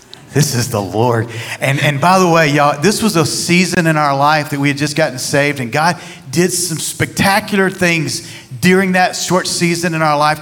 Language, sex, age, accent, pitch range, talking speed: English, male, 40-59, American, 145-205 Hz, 205 wpm